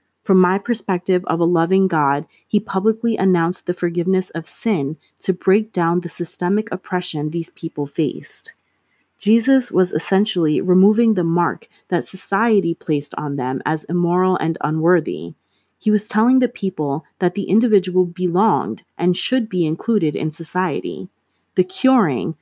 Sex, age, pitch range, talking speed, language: female, 30-49, 165-205 Hz, 145 wpm, English